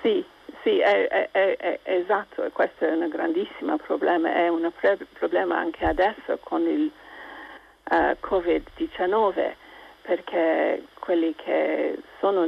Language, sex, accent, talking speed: Italian, female, native, 120 wpm